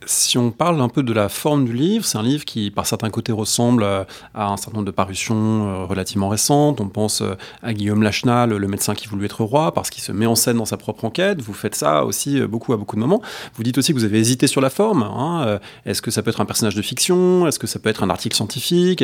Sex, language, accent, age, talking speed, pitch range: male, English, French, 30-49, 265 wpm, 105-135 Hz